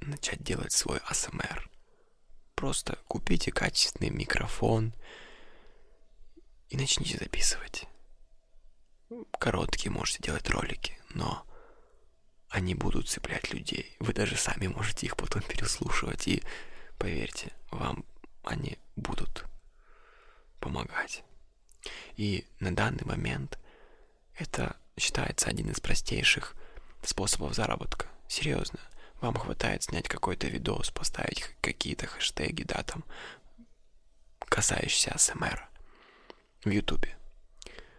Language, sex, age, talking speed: Russian, male, 20-39, 95 wpm